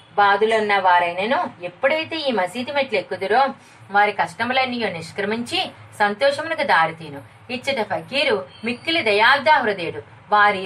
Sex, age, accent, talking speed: female, 30-49, native, 95 wpm